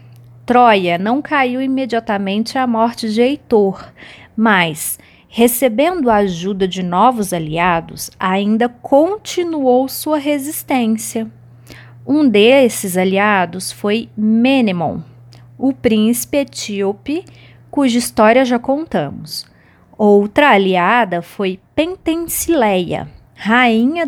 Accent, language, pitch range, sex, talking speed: Brazilian, Portuguese, 185-270 Hz, female, 90 wpm